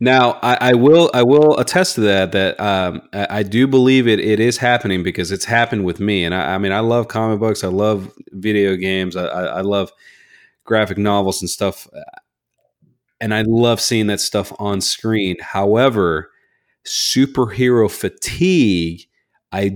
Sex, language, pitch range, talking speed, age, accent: male, English, 95-115 Hz, 165 wpm, 30-49, American